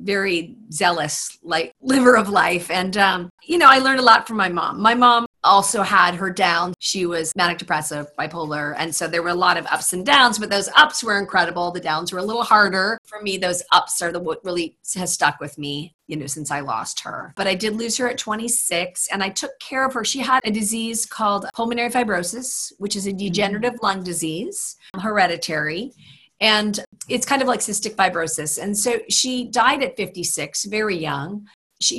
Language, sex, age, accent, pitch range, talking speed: English, female, 40-59, American, 175-225 Hz, 205 wpm